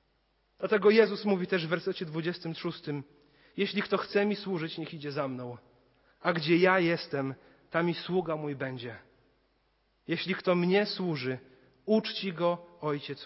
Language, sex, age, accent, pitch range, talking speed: Polish, male, 40-59, native, 130-180 Hz, 145 wpm